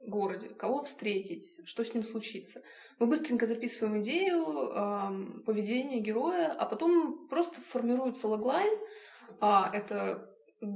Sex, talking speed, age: female, 125 wpm, 20-39